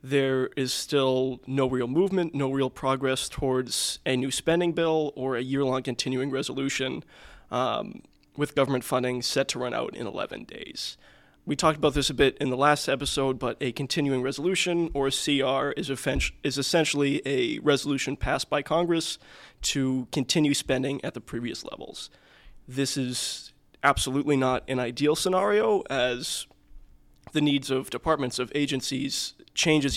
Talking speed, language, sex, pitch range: 155 wpm, English, male, 130-145 Hz